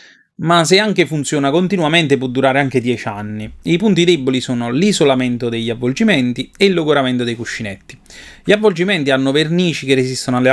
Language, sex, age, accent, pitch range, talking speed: Italian, male, 30-49, native, 120-150 Hz, 165 wpm